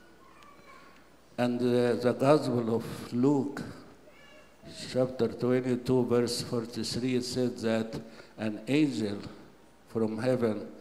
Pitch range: 115-135 Hz